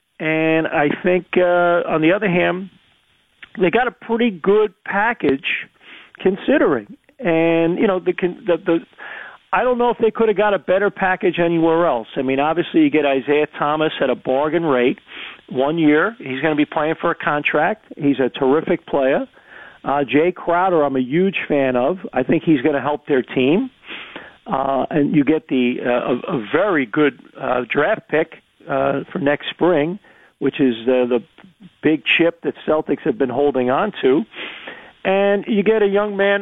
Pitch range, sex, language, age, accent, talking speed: 150-195 Hz, male, English, 50-69, American, 185 wpm